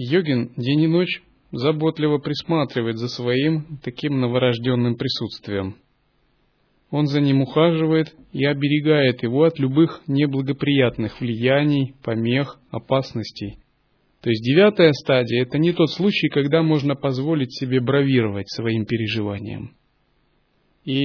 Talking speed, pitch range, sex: 115 wpm, 125-150 Hz, male